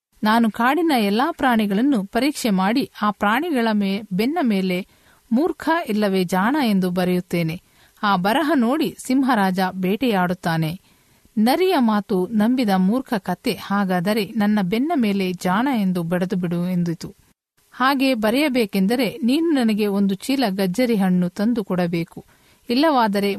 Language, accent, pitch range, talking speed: Kannada, native, 190-245 Hz, 115 wpm